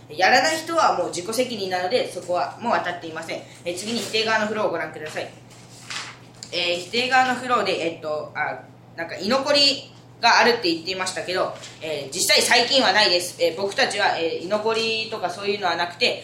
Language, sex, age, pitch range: Japanese, female, 20-39, 175-255 Hz